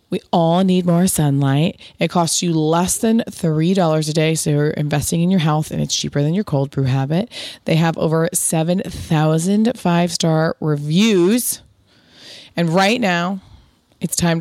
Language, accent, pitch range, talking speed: English, American, 150-180 Hz, 160 wpm